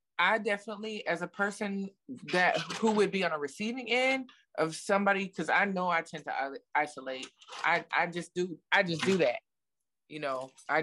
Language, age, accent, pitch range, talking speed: English, 20-39, American, 140-180 Hz, 185 wpm